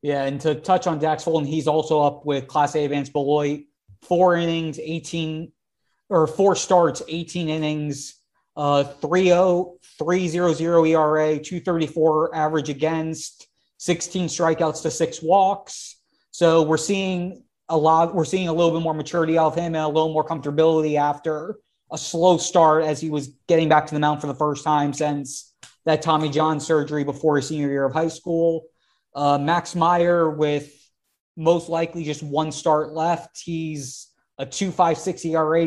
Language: English